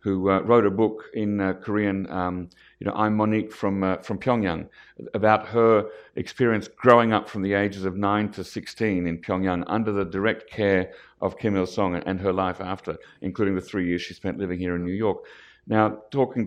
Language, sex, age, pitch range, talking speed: English, male, 50-69, 95-110 Hz, 200 wpm